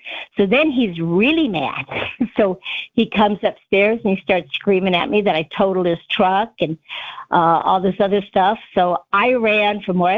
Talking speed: 185 wpm